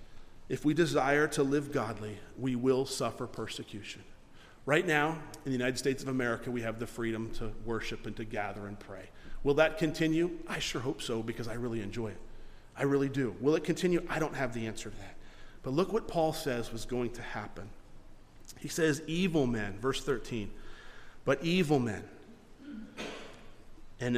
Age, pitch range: 40-59, 120-160 Hz